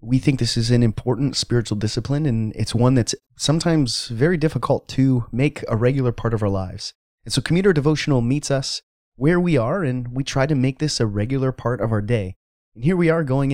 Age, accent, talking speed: 30-49, American, 215 wpm